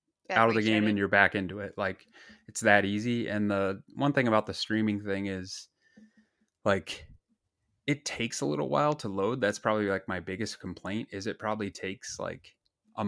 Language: English